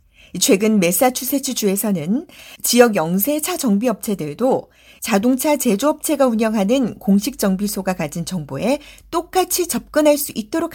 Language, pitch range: Korean, 185-280 Hz